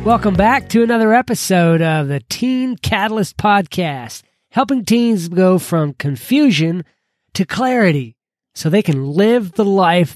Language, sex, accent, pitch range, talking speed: English, male, American, 145-210 Hz, 135 wpm